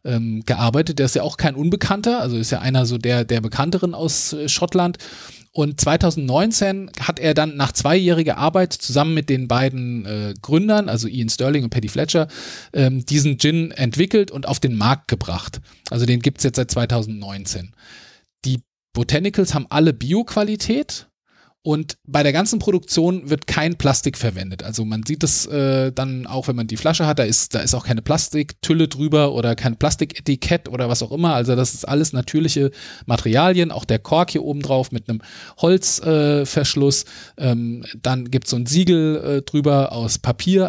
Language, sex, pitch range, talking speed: German, male, 120-160 Hz, 180 wpm